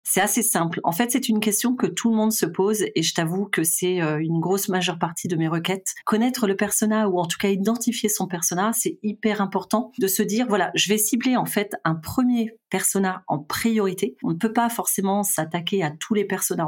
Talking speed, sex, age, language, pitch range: 225 wpm, female, 30-49, French, 170-220 Hz